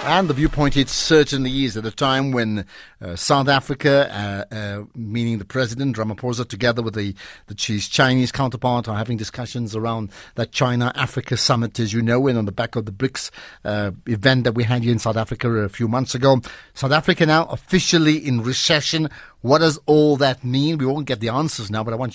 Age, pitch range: 50-69, 120-160 Hz